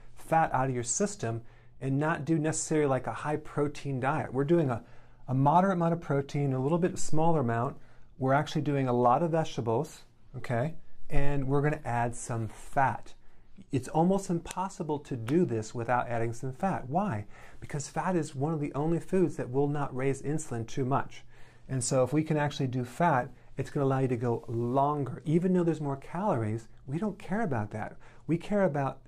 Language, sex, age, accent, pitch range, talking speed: English, male, 40-59, American, 120-155 Hz, 200 wpm